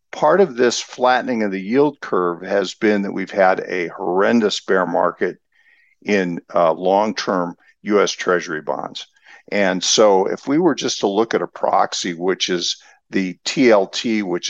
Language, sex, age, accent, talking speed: English, male, 50-69, American, 160 wpm